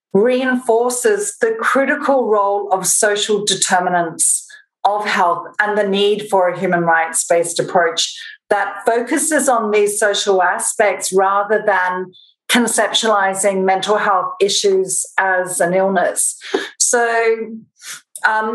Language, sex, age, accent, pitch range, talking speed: English, female, 40-59, Australian, 200-245 Hz, 110 wpm